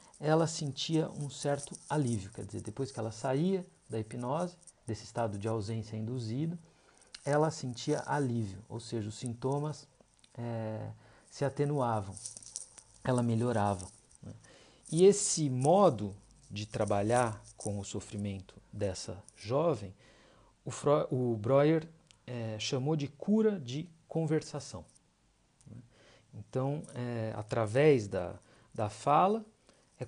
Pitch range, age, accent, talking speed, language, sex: 115-160 Hz, 50-69, Brazilian, 120 wpm, Portuguese, male